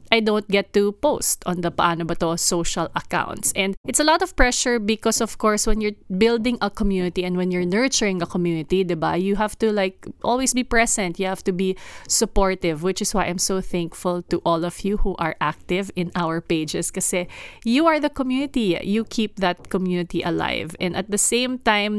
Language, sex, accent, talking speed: English, female, Filipino, 205 wpm